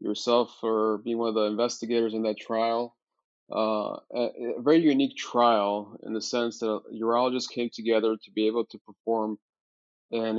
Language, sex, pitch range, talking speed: English, male, 110-120 Hz, 170 wpm